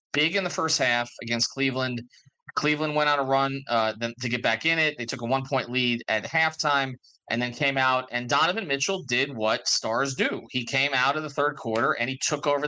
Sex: male